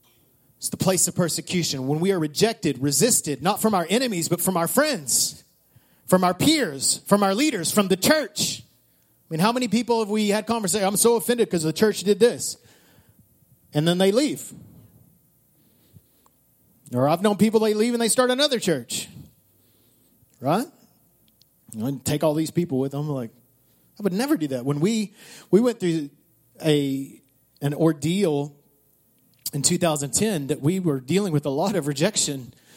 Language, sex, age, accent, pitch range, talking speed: English, male, 30-49, American, 145-205 Hz, 170 wpm